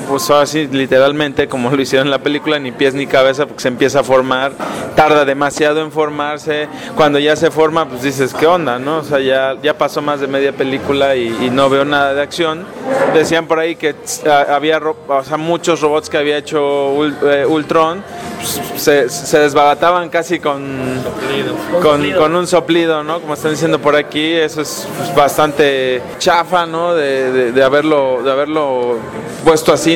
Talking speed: 185 wpm